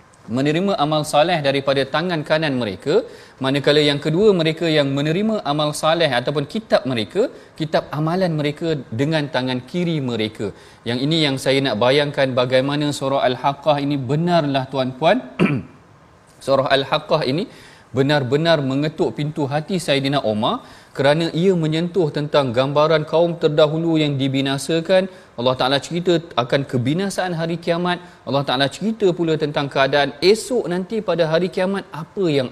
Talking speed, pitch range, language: 140 wpm, 140-170 Hz, Malayalam